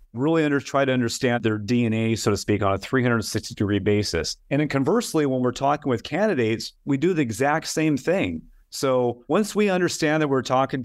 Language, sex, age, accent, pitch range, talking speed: English, male, 30-49, American, 110-145 Hz, 195 wpm